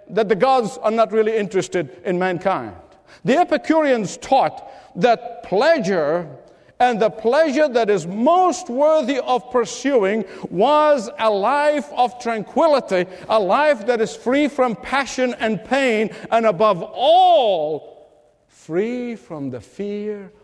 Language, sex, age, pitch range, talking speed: English, male, 50-69, 175-230 Hz, 130 wpm